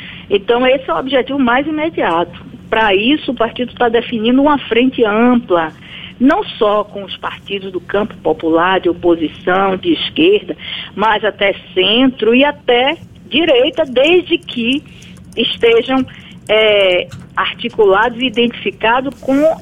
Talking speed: 125 wpm